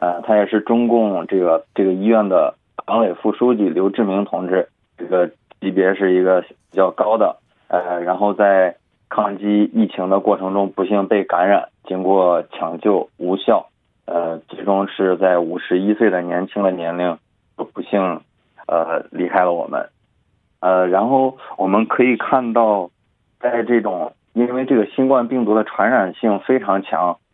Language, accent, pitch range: Korean, Chinese, 95-115 Hz